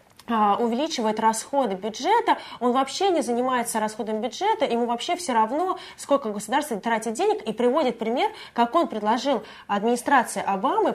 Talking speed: 135 wpm